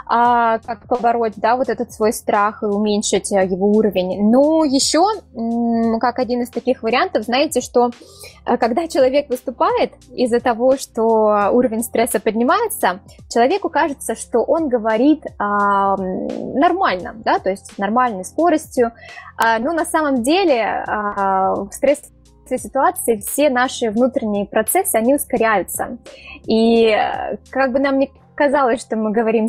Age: 20-39